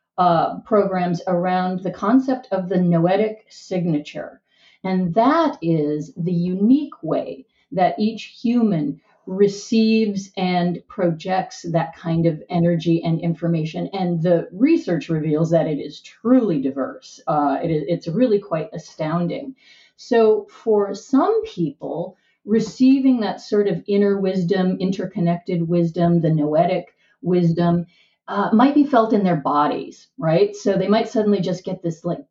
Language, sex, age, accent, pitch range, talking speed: English, female, 40-59, American, 170-225 Hz, 135 wpm